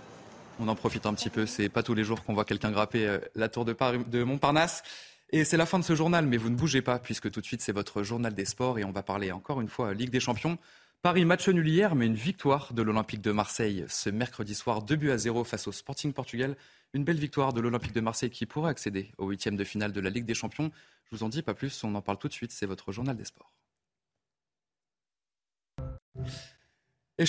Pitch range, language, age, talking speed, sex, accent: 110-150 Hz, French, 20-39, 245 wpm, male, French